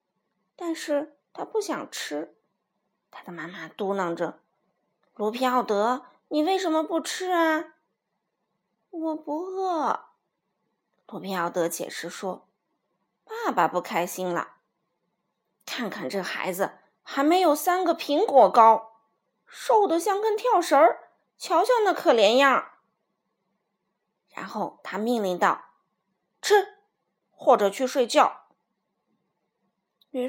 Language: Chinese